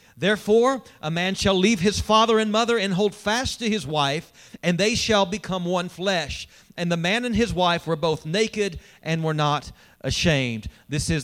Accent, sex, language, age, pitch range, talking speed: American, male, English, 40-59, 135-205 Hz, 190 wpm